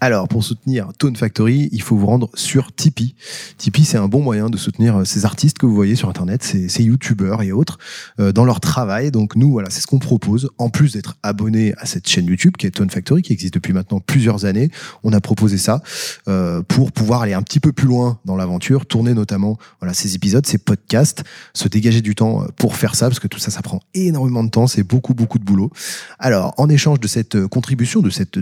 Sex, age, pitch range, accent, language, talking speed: male, 30-49, 100-135 Hz, French, French, 230 wpm